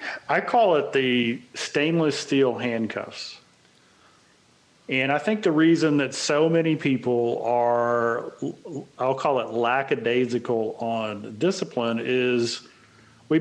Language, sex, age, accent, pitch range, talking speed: English, male, 40-59, American, 125-155 Hz, 110 wpm